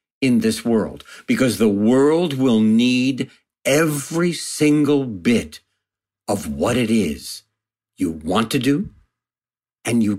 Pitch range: 110-160 Hz